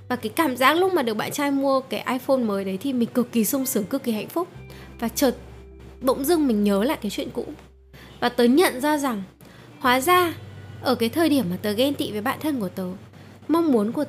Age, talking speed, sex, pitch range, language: 10-29, 245 wpm, female, 215-285 Hz, Vietnamese